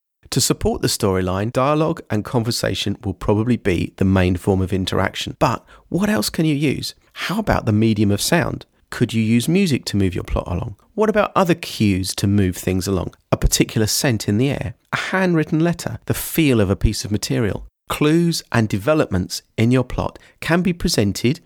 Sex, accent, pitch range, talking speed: male, British, 100-140 Hz, 195 wpm